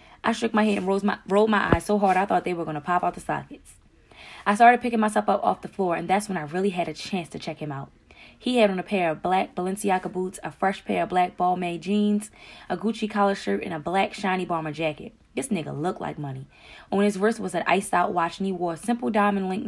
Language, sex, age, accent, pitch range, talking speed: English, female, 20-39, American, 170-205 Hz, 260 wpm